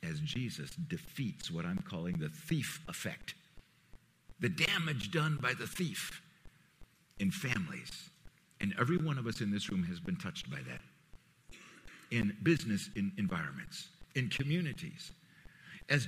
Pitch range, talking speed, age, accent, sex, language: 150-190 Hz, 140 wpm, 60-79, American, male, English